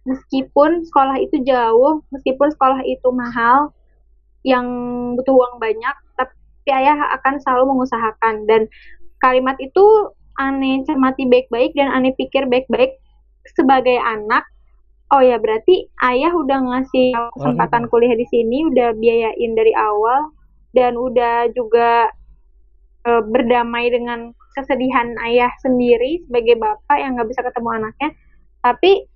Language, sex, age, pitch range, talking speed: Indonesian, female, 20-39, 245-290 Hz, 125 wpm